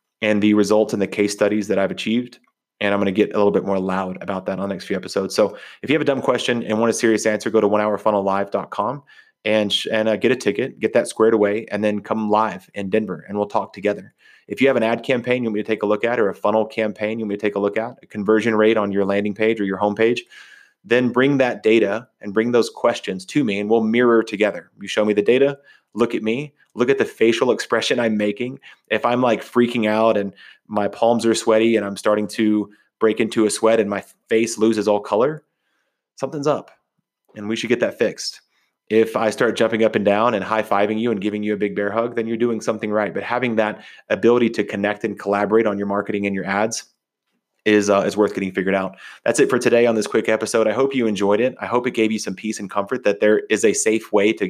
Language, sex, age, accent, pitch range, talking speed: English, male, 30-49, American, 105-115 Hz, 255 wpm